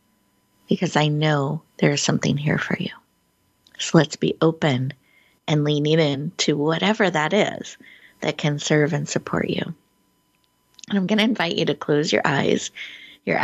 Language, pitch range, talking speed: English, 150-195 Hz, 165 wpm